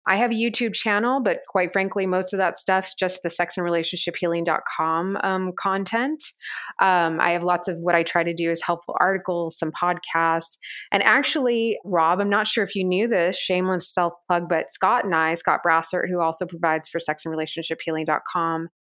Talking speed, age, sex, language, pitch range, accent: 180 wpm, 20-39, female, English, 170-195 Hz, American